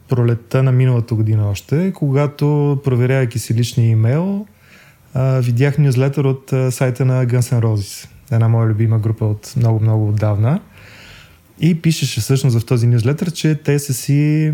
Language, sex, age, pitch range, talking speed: Bulgarian, male, 20-39, 115-140 Hz, 150 wpm